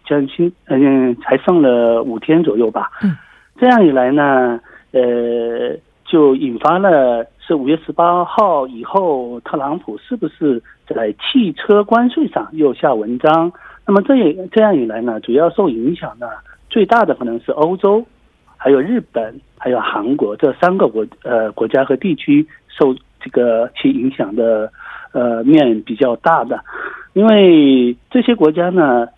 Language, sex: Korean, male